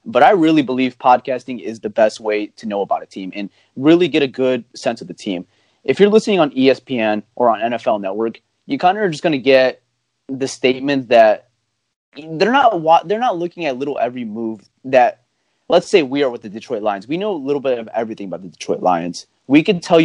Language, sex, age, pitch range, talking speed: English, male, 30-49, 110-140 Hz, 225 wpm